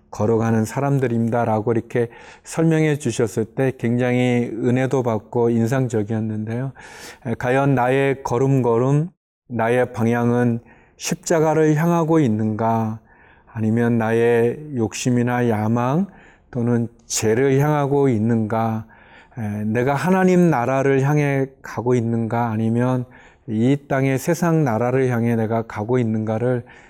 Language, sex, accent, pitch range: Korean, male, native, 115-140 Hz